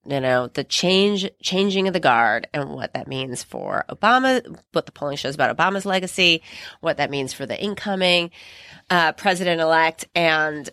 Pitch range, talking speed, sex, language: 155-195 Hz, 175 wpm, female, English